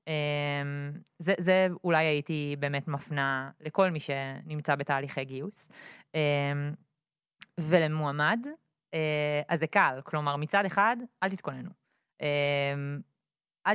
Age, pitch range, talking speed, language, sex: 20-39, 145-200 Hz, 110 wpm, Hebrew, female